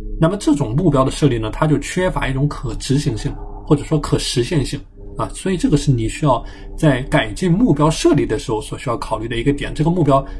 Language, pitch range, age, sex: Chinese, 130-155 Hz, 20-39, male